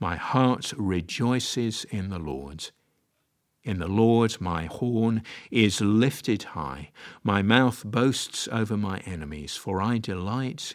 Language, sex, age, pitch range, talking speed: English, male, 50-69, 85-115 Hz, 130 wpm